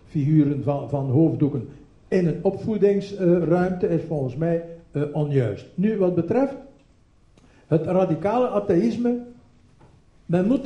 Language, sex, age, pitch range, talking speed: Dutch, male, 60-79, 150-205 Hz, 115 wpm